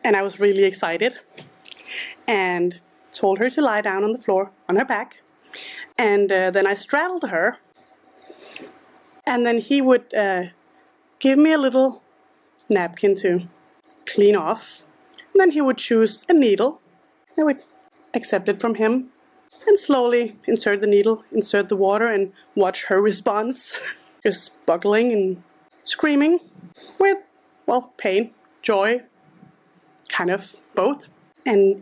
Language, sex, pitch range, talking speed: English, female, 190-290 Hz, 140 wpm